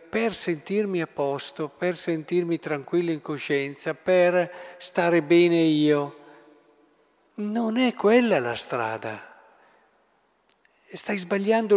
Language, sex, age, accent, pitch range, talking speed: Italian, male, 50-69, native, 140-200 Hz, 100 wpm